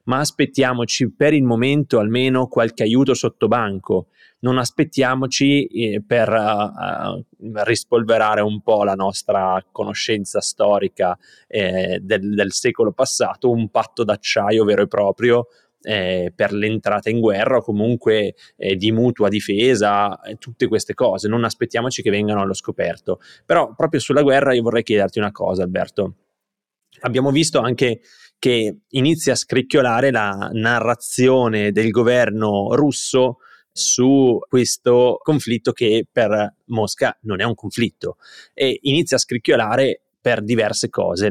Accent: native